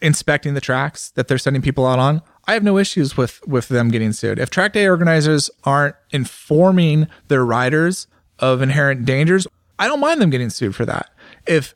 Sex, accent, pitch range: male, American, 135-190 Hz